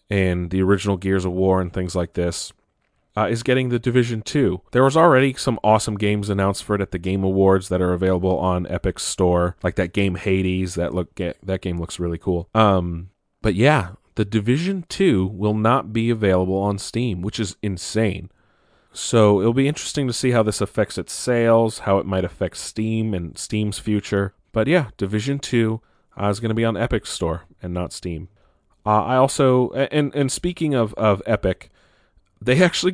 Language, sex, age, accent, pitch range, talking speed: English, male, 30-49, American, 95-115 Hz, 195 wpm